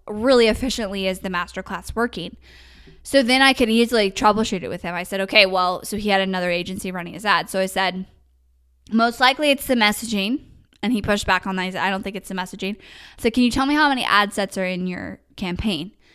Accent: American